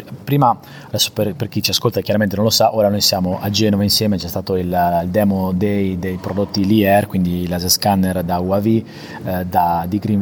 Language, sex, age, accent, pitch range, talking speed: Italian, male, 30-49, native, 100-125 Hz, 205 wpm